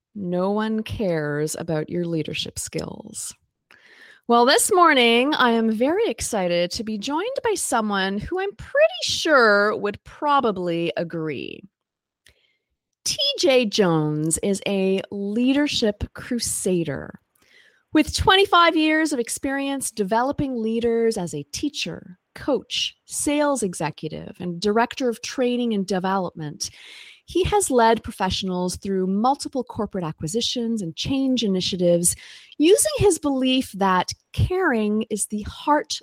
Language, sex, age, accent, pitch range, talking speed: English, female, 30-49, American, 190-275 Hz, 115 wpm